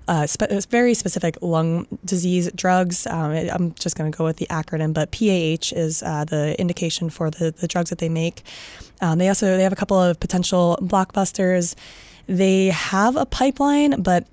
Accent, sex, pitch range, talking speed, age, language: American, female, 170-195 Hz, 185 wpm, 20-39, English